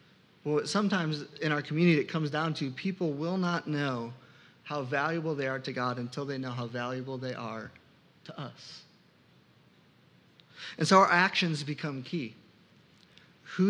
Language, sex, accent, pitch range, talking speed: English, male, American, 140-180 Hz, 155 wpm